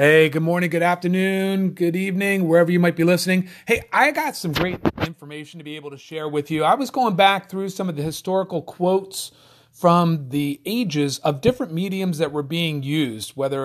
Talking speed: 200 wpm